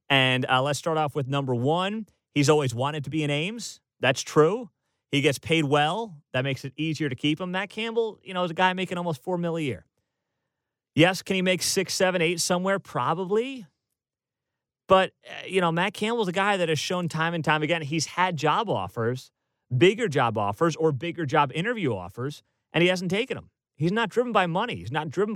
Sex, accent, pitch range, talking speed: male, American, 140-180 Hz, 210 wpm